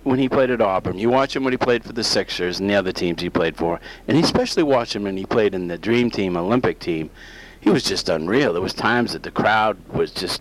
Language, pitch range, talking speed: English, 95-125 Hz, 270 wpm